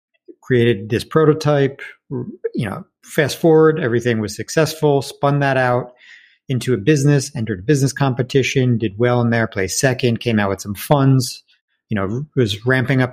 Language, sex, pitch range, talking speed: English, male, 100-135 Hz, 165 wpm